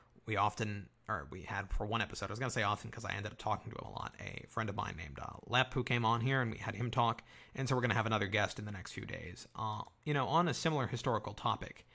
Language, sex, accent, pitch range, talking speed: English, male, American, 110-130 Hz, 290 wpm